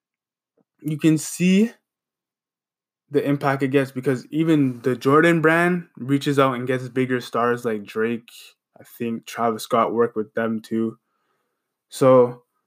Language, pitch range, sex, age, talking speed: English, 125-145 Hz, male, 20-39, 135 wpm